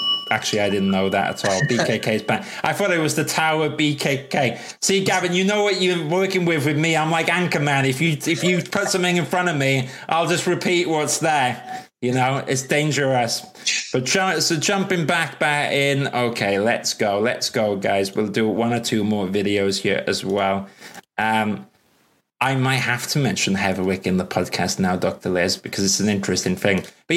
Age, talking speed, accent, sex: 20-39, 200 wpm, British, male